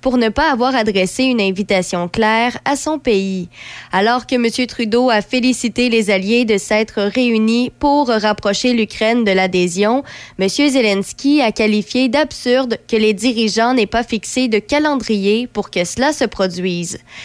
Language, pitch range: French, 205-250 Hz